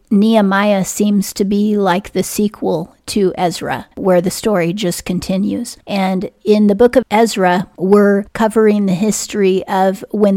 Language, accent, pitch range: English, American, 185-210 Hz